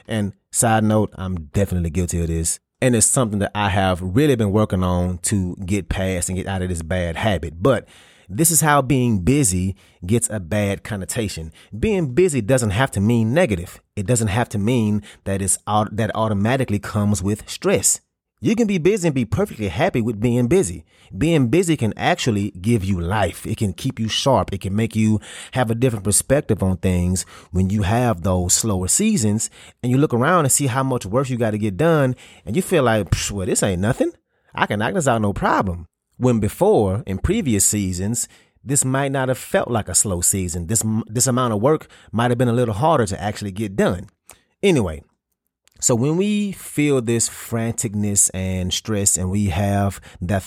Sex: male